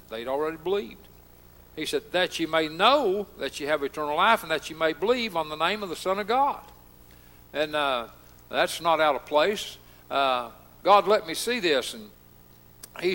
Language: English